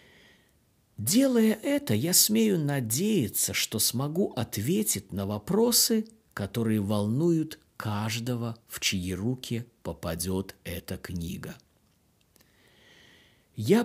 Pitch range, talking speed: 105-165 Hz, 85 wpm